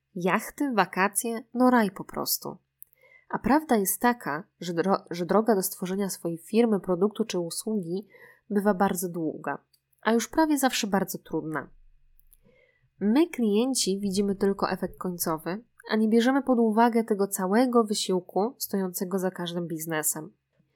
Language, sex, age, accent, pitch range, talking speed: Polish, female, 20-39, native, 175-220 Hz, 135 wpm